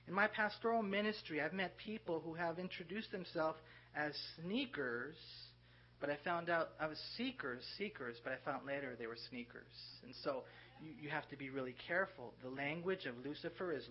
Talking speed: 180 wpm